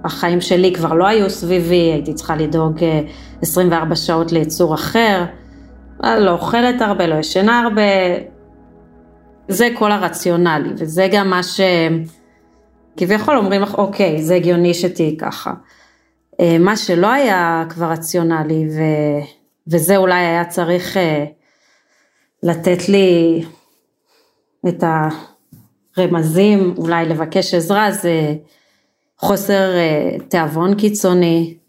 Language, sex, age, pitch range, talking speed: Hebrew, female, 30-49, 165-200 Hz, 105 wpm